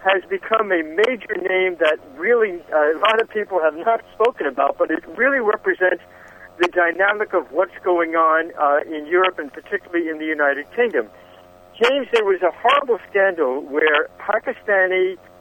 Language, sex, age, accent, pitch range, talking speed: English, male, 60-79, American, 165-230 Hz, 170 wpm